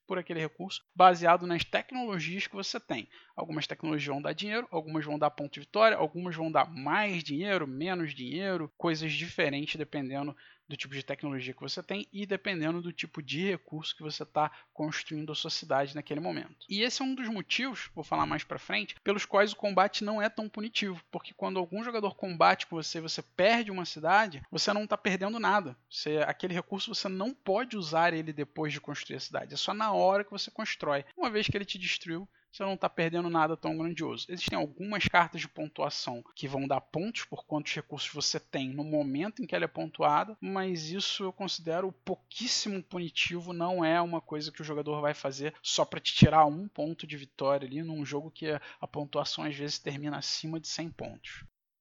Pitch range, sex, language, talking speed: 150-205 Hz, male, Portuguese, 205 wpm